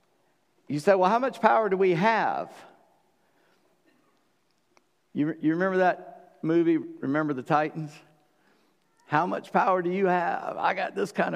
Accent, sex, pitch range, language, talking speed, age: American, male, 135-180 Hz, English, 145 wpm, 50-69